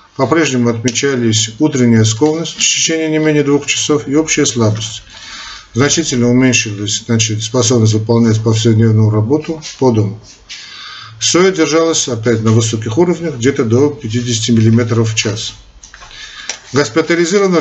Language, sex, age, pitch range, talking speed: Russian, male, 50-69, 110-145 Hz, 115 wpm